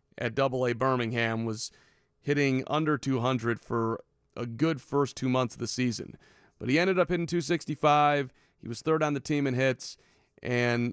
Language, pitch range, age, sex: English, 115-135 Hz, 30-49, male